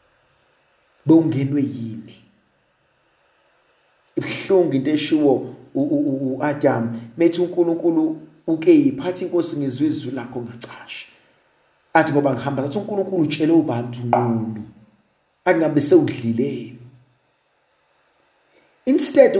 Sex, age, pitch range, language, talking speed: male, 50-69, 130-190 Hz, English, 110 wpm